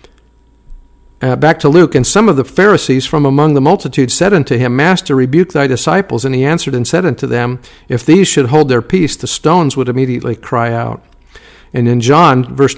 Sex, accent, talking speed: male, American, 200 wpm